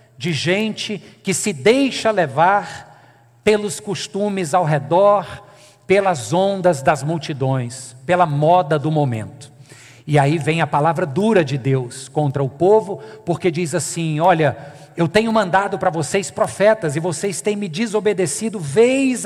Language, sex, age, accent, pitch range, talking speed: Portuguese, male, 50-69, Brazilian, 150-215 Hz, 140 wpm